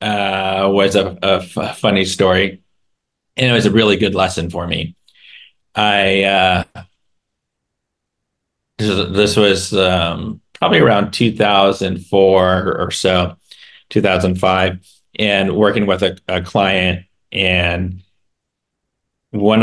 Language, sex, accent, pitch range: English, male, American, 90-105 Hz